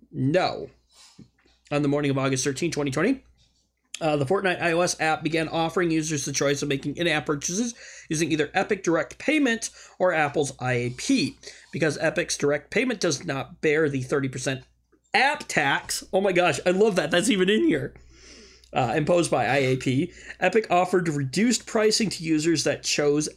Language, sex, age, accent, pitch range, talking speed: English, male, 30-49, American, 140-205 Hz, 160 wpm